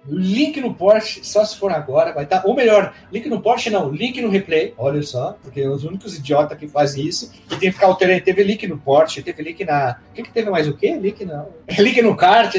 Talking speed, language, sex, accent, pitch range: 250 wpm, Portuguese, male, Brazilian, 165-230 Hz